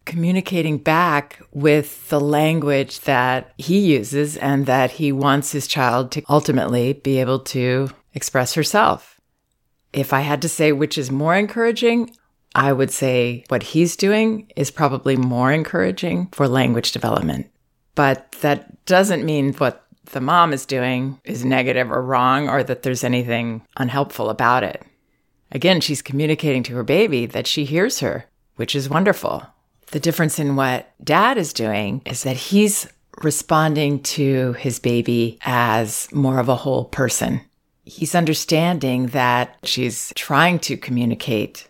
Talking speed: 150 wpm